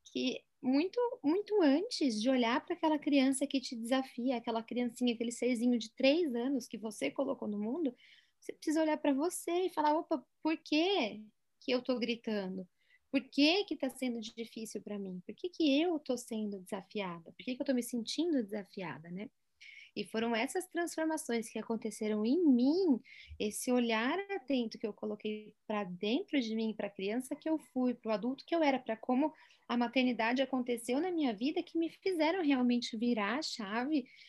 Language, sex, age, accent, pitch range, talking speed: Portuguese, female, 10-29, Brazilian, 225-300 Hz, 185 wpm